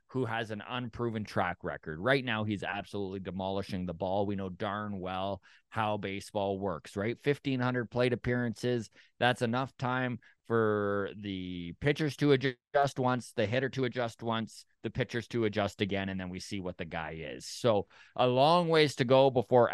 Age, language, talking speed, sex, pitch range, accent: 20-39, English, 175 wpm, male, 100-130 Hz, American